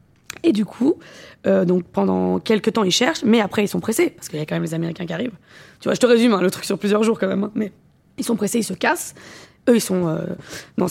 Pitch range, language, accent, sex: 180-225 Hz, French, French, female